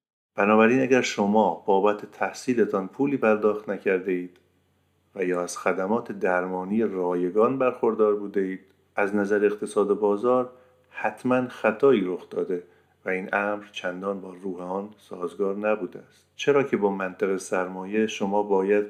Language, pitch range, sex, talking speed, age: Persian, 90-110 Hz, male, 135 wpm, 50-69